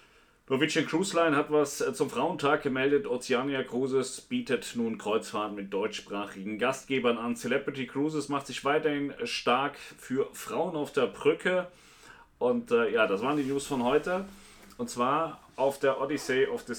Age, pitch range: 30-49, 110-145 Hz